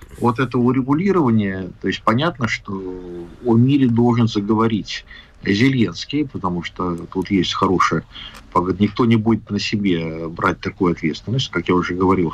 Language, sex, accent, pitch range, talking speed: Russian, male, native, 95-130 Hz, 140 wpm